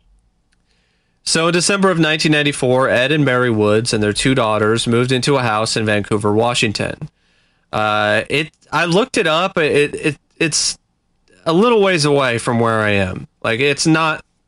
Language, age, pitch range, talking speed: English, 30-49, 105-145 Hz, 165 wpm